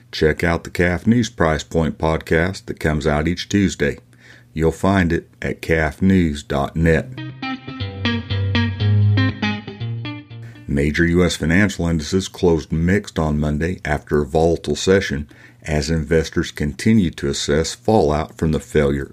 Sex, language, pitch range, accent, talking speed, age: male, English, 75-100 Hz, American, 120 wpm, 50-69